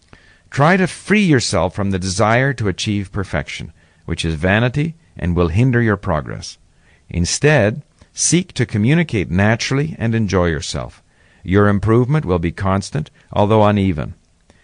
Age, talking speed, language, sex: 50-69, 135 wpm, English, male